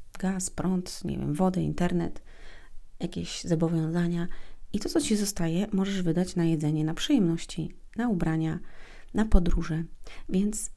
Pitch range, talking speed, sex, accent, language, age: 150-185 Hz, 135 wpm, female, native, Polish, 30-49